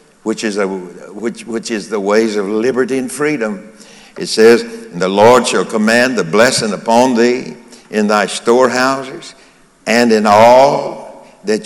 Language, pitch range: English, 105-130 Hz